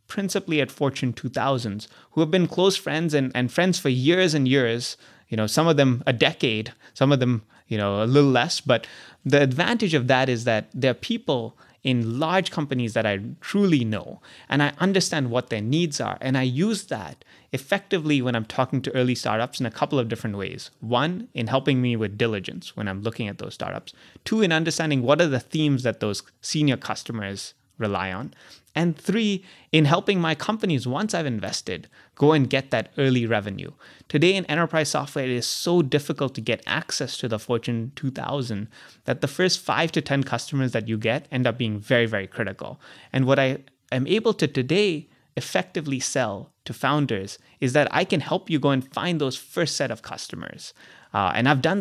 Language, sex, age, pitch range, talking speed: English, male, 30-49, 120-160 Hz, 200 wpm